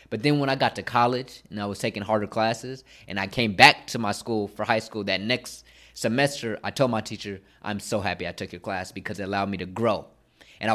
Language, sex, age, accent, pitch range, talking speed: English, male, 20-39, American, 100-125 Hz, 245 wpm